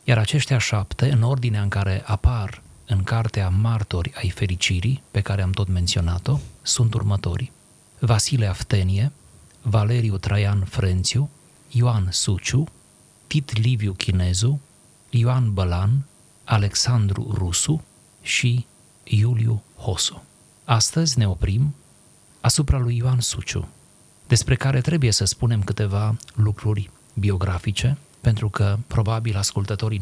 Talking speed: 110 wpm